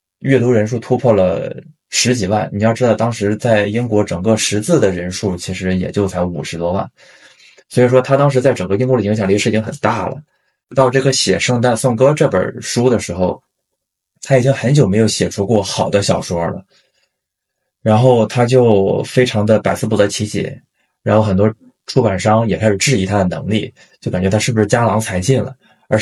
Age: 20-39